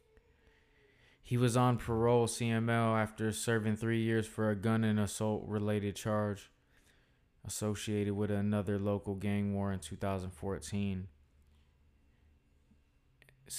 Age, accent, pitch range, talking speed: 20-39, American, 95-105 Hz, 100 wpm